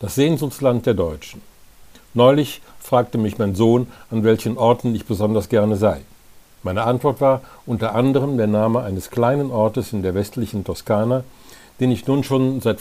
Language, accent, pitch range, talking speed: German, German, 100-125 Hz, 165 wpm